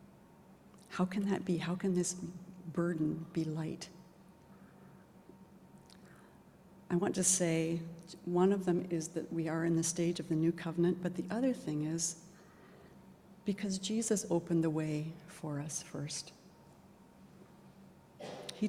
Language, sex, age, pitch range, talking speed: English, female, 60-79, 160-190 Hz, 135 wpm